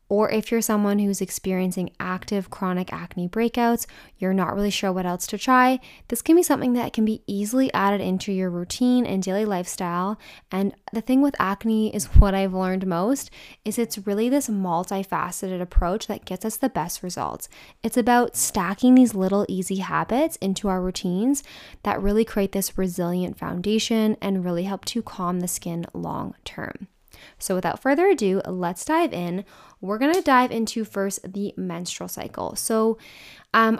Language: English